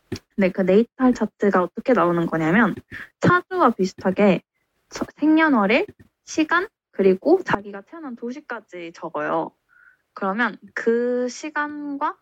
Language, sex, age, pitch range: Korean, female, 10-29, 185-260 Hz